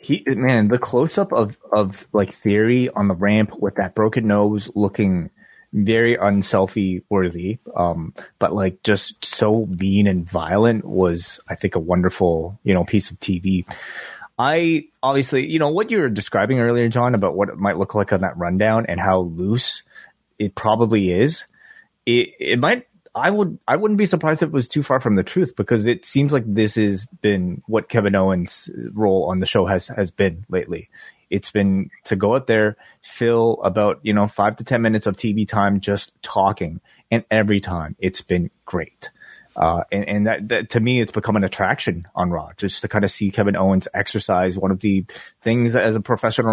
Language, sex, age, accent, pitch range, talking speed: English, male, 20-39, American, 95-115 Hz, 195 wpm